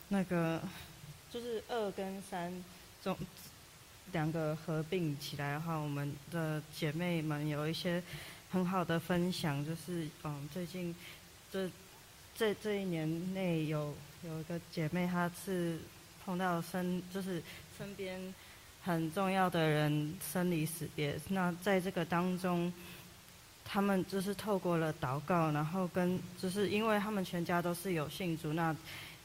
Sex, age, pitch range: female, 20-39, 160-190 Hz